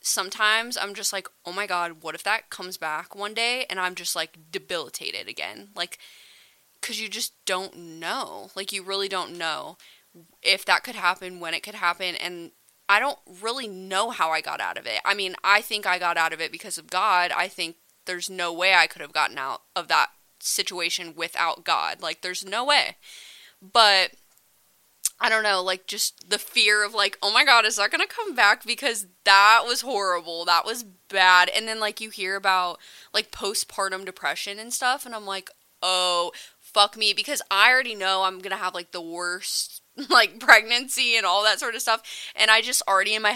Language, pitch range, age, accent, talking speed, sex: English, 180-220 Hz, 20-39, American, 205 wpm, female